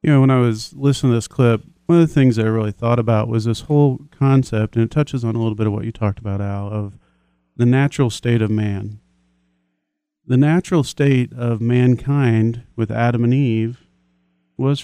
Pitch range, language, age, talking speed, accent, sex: 110-130 Hz, English, 40-59, 205 wpm, American, male